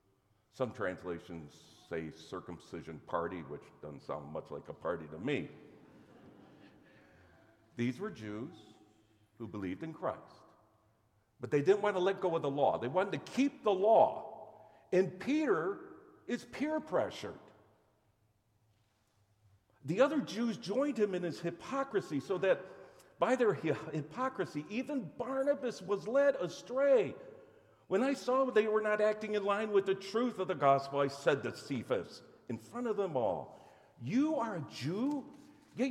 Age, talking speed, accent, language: 50-69, 150 wpm, American, English